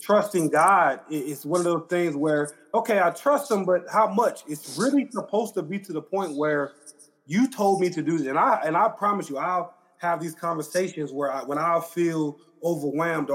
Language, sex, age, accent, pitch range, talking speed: English, male, 20-39, American, 150-180 Hz, 205 wpm